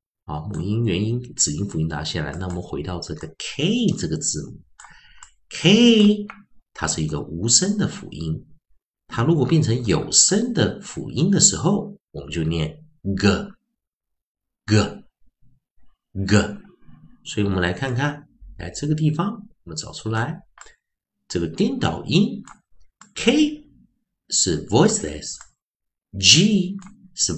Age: 50-69